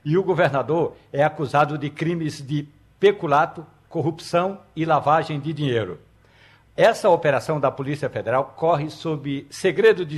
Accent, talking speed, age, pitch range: Brazilian, 135 wpm, 60-79, 135-175 Hz